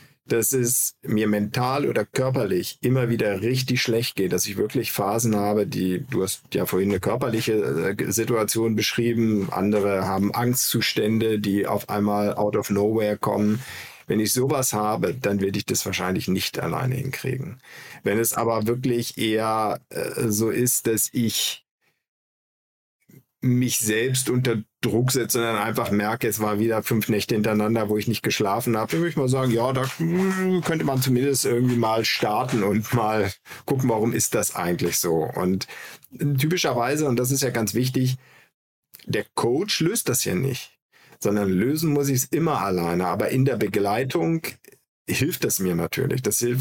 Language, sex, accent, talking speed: German, male, German, 165 wpm